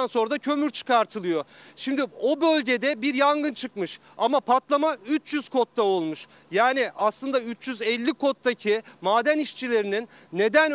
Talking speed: 125 wpm